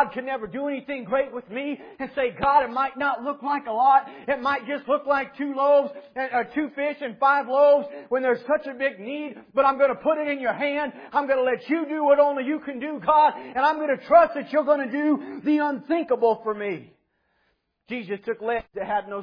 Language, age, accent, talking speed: English, 40-59, American, 245 wpm